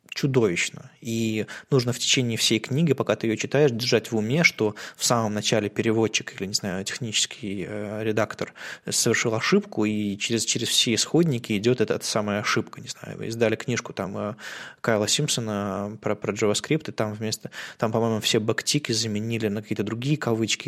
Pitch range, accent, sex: 105-130 Hz, native, male